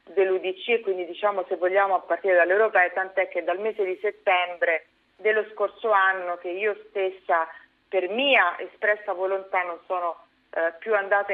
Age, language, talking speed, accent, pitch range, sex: 40-59, Italian, 165 wpm, native, 175-220 Hz, female